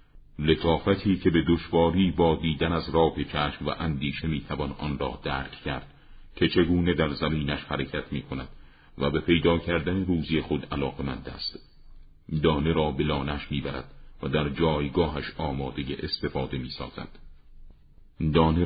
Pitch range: 75-85 Hz